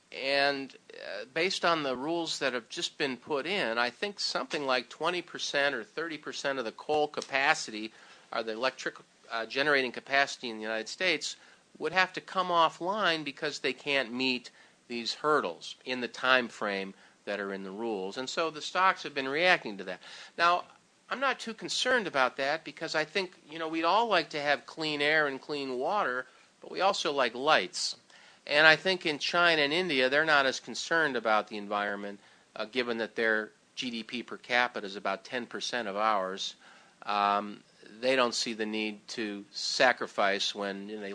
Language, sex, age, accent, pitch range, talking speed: English, male, 50-69, American, 115-155 Hz, 180 wpm